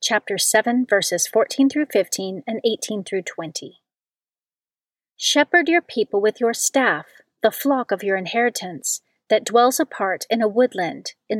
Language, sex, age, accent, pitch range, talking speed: English, female, 40-59, American, 205-255 Hz, 145 wpm